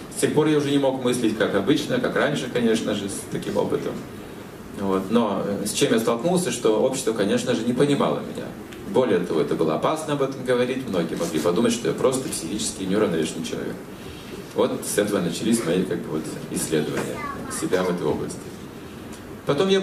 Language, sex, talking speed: Russian, male, 190 wpm